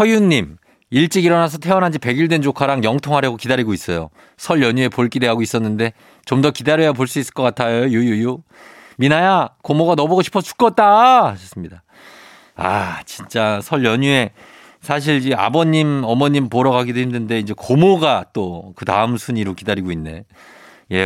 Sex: male